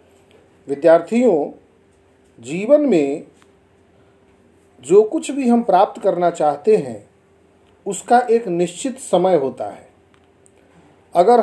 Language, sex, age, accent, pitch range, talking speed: Hindi, male, 50-69, native, 180-255 Hz, 95 wpm